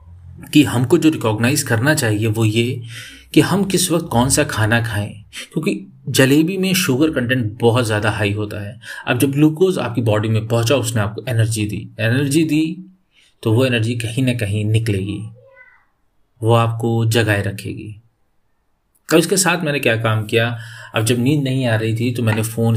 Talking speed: 175 wpm